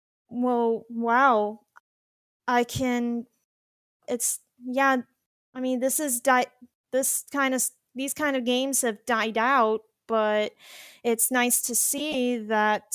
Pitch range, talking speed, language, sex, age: 230-265 Hz, 125 wpm, English, female, 20-39